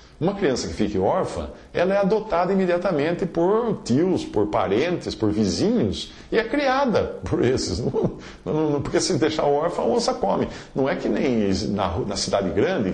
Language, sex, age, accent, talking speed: English, male, 50-69, Brazilian, 160 wpm